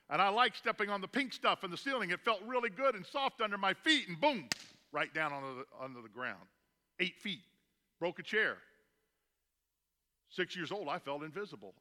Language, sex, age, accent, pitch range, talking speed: English, male, 50-69, American, 145-220 Hz, 200 wpm